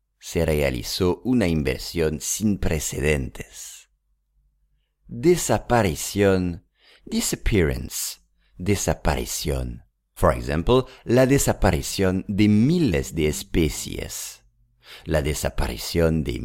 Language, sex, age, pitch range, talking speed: English, male, 50-69, 75-120 Hz, 75 wpm